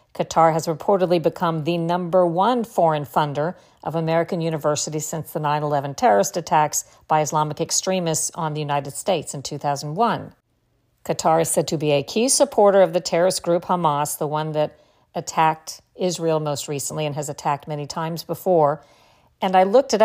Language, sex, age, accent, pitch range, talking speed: English, female, 50-69, American, 155-180 Hz, 170 wpm